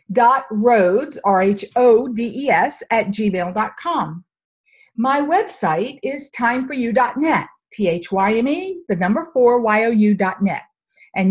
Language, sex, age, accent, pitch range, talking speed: English, female, 50-69, American, 210-300 Hz, 80 wpm